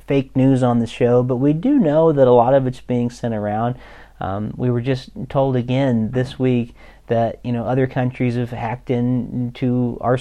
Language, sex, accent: English, male, American